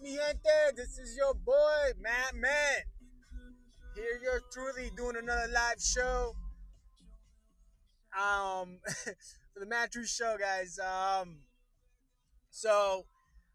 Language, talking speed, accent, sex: English, 95 wpm, American, male